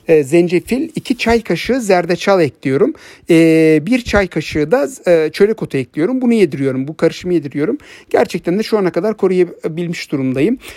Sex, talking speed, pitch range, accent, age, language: male, 145 wpm, 155-195 Hz, native, 60-79, Turkish